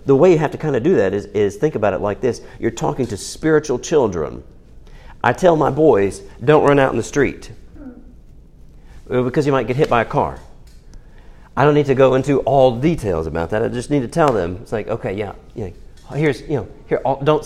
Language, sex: English, male